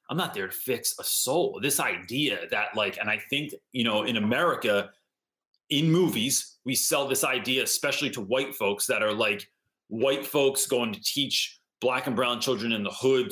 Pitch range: 130-180 Hz